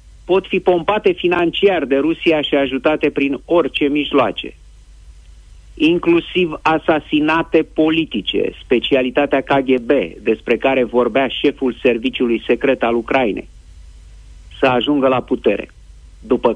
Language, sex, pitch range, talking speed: Romanian, male, 110-160 Hz, 105 wpm